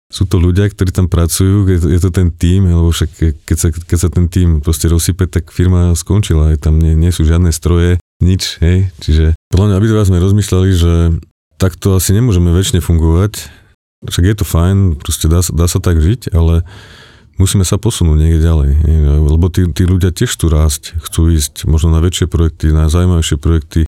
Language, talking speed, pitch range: Slovak, 190 wpm, 80-95 Hz